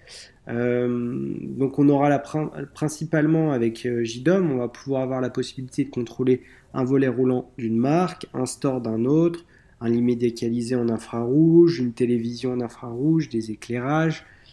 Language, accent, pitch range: French, French, 115-145 Hz